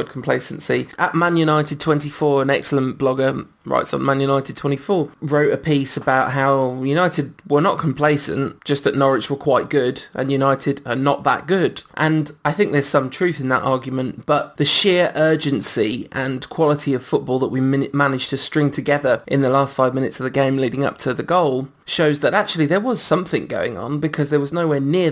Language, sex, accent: English, male, British